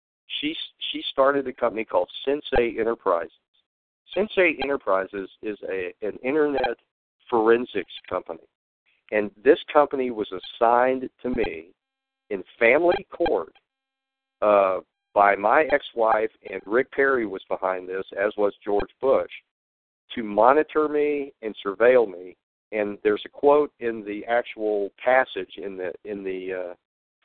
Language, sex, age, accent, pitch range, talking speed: English, male, 50-69, American, 100-150 Hz, 130 wpm